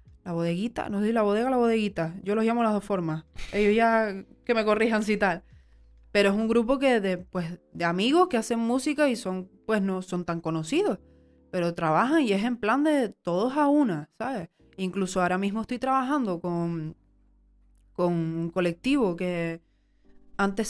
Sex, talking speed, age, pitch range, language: female, 180 wpm, 20-39, 180-230 Hz, Spanish